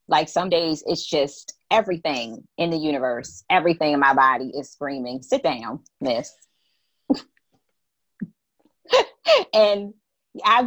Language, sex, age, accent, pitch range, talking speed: English, female, 30-49, American, 160-240 Hz, 110 wpm